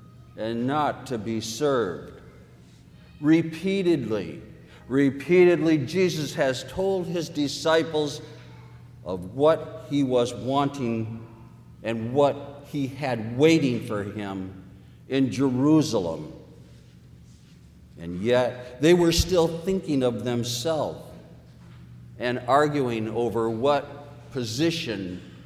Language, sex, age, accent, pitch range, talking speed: English, male, 60-79, American, 110-155 Hz, 90 wpm